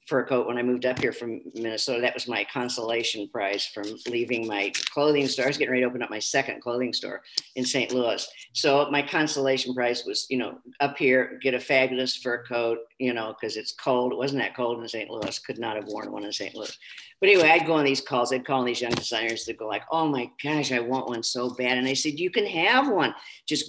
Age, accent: 50-69, American